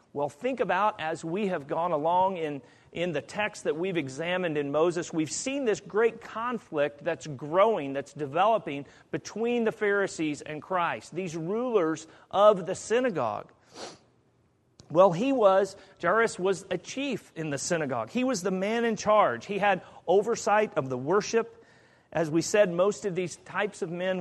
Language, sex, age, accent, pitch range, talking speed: English, male, 40-59, American, 160-215 Hz, 165 wpm